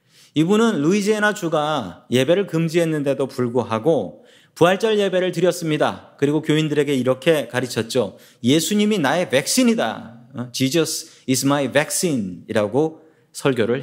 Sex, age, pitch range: male, 40-59, 140-195 Hz